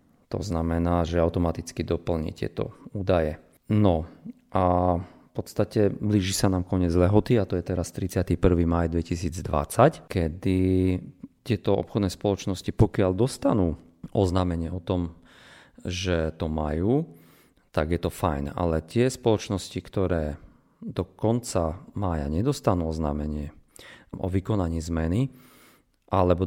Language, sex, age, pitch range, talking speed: Slovak, male, 40-59, 85-100 Hz, 120 wpm